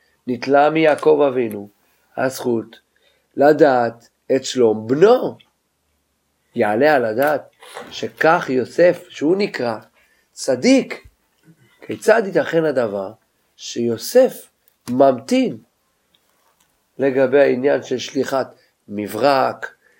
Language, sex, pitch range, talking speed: Hebrew, male, 105-145 Hz, 80 wpm